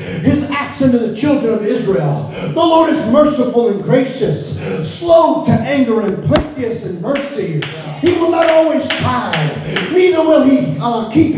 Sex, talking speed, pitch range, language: male, 160 wpm, 240-295 Hz, English